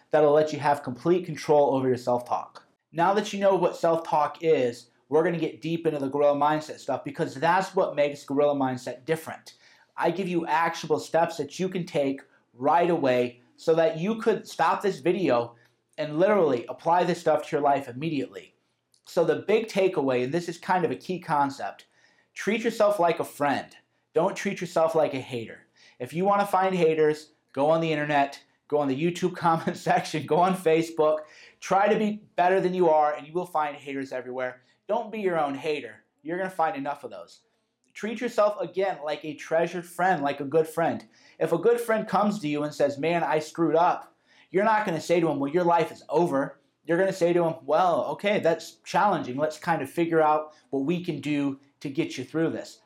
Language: English